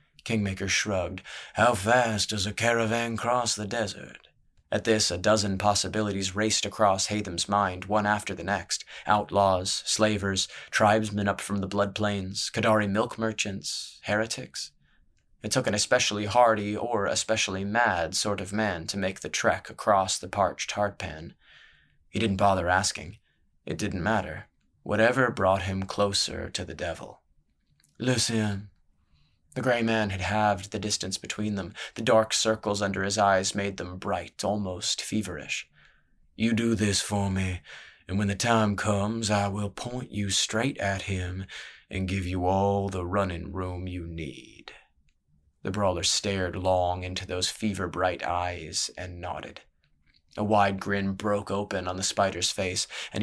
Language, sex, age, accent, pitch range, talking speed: English, male, 20-39, American, 95-110 Hz, 150 wpm